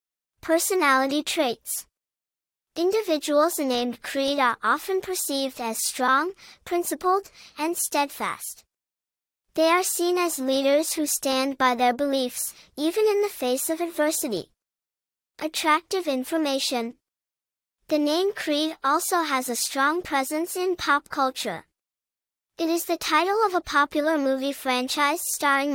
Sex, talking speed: male, 120 wpm